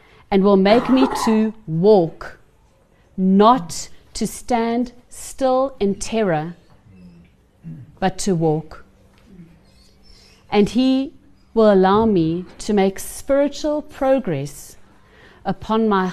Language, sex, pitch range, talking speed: English, female, 170-215 Hz, 95 wpm